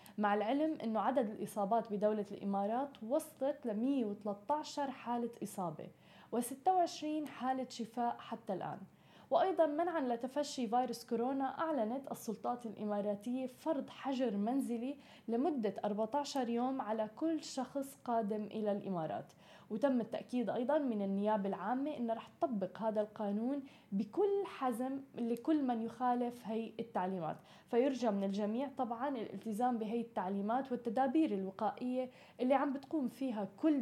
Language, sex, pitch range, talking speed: Arabic, female, 215-270 Hz, 125 wpm